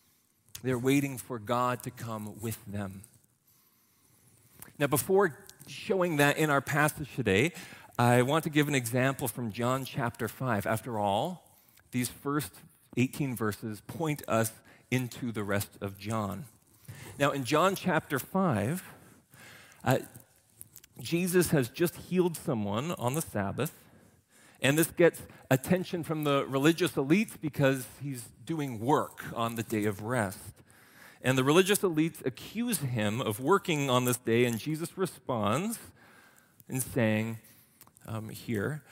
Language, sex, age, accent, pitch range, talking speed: English, male, 40-59, American, 115-150 Hz, 135 wpm